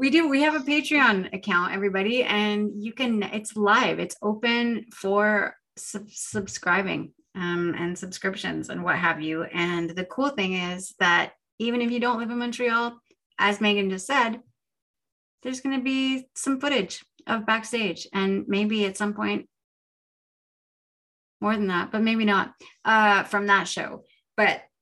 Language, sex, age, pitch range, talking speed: English, female, 30-49, 190-240 Hz, 155 wpm